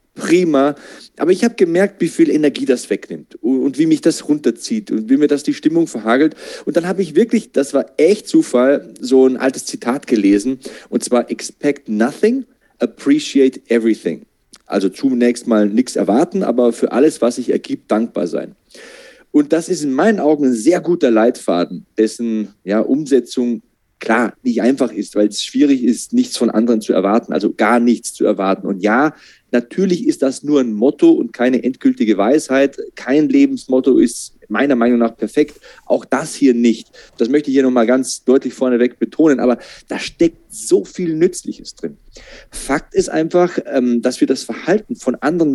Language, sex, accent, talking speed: German, male, German, 175 wpm